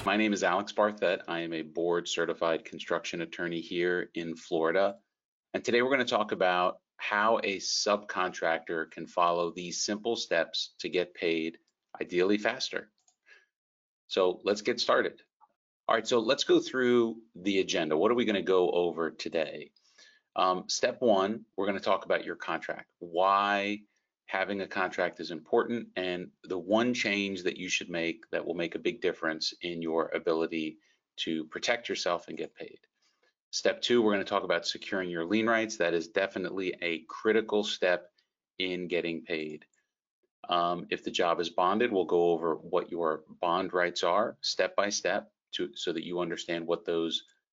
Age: 40-59